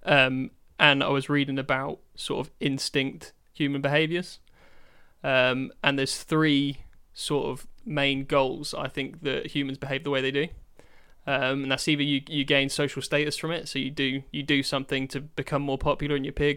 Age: 20-39